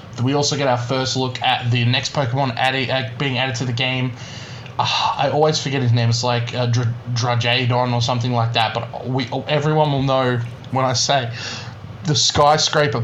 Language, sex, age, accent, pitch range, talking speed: English, male, 20-39, Australian, 115-135 Hz, 195 wpm